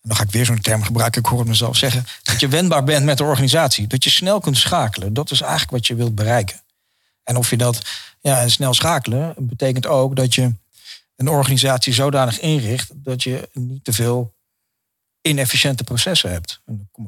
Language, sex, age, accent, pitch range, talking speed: Dutch, male, 40-59, Dutch, 115-135 Hz, 205 wpm